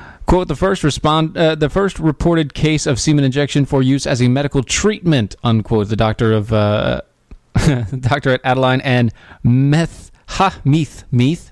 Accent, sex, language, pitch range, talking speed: American, male, English, 120-155 Hz, 160 wpm